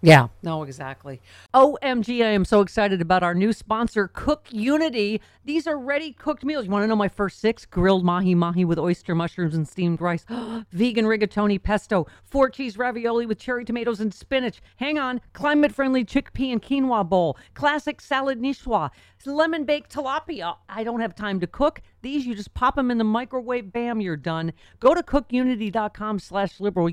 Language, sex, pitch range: English, female, 180-260 Hz